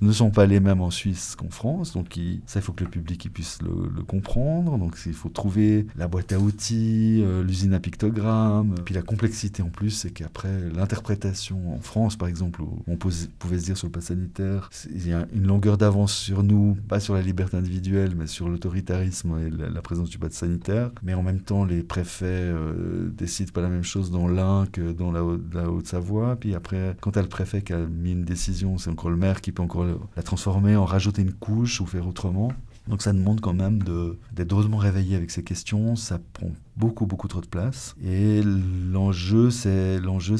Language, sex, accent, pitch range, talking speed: French, male, French, 90-105 Hz, 215 wpm